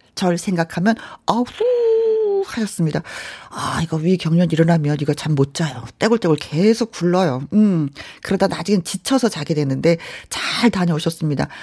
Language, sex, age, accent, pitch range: Korean, female, 40-59, native, 180-265 Hz